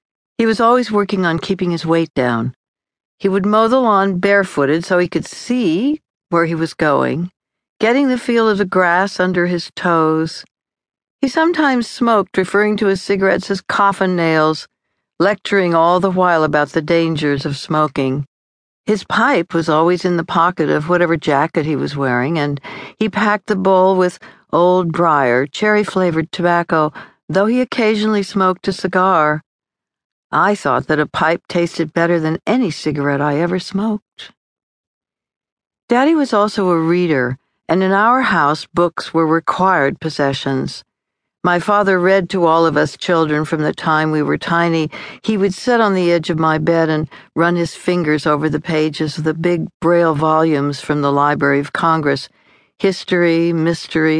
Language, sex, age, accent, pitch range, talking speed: English, female, 60-79, American, 155-195 Hz, 165 wpm